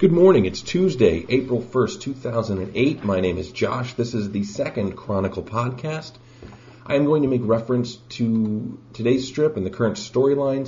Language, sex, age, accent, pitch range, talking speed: English, male, 40-59, American, 95-120 Hz, 170 wpm